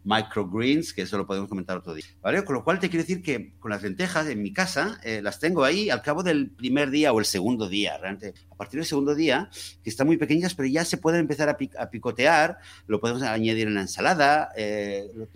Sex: male